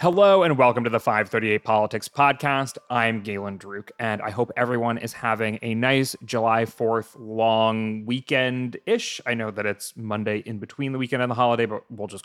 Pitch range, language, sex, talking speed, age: 115-160 Hz, English, male, 190 wpm, 30-49